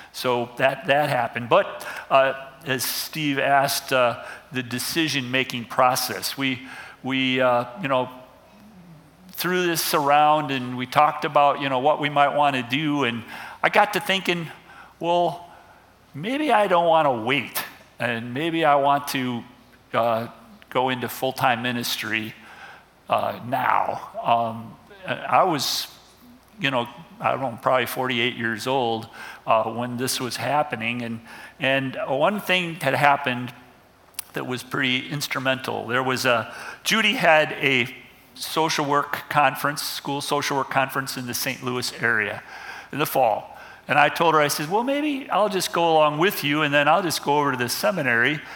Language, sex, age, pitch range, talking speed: English, male, 50-69, 125-150 Hz, 155 wpm